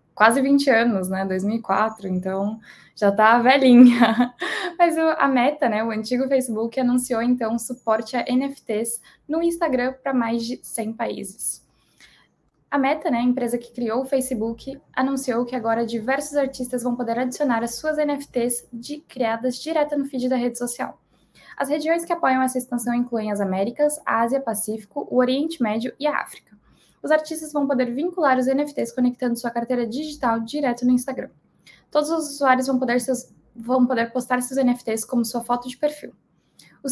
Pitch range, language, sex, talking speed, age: 230-280 Hz, Portuguese, female, 170 wpm, 10-29